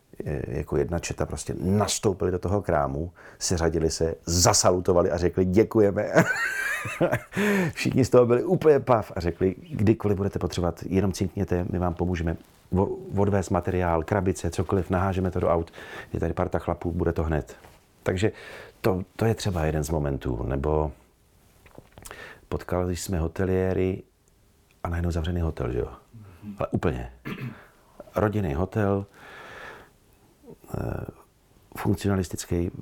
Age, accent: 40-59, native